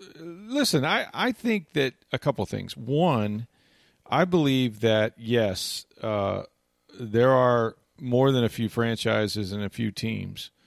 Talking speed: 145 wpm